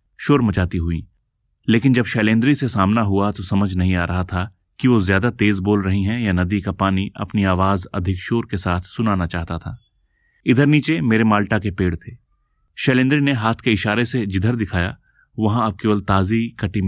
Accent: native